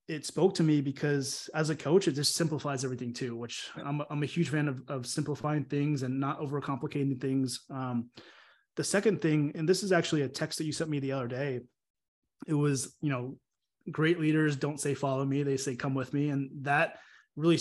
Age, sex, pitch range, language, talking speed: 20-39, male, 135-155 Hz, English, 215 wpm